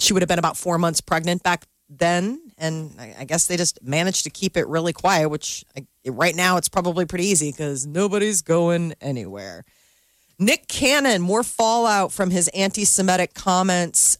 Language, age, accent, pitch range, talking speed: English, 40-59, American, 155-185 Hz, 170 wpm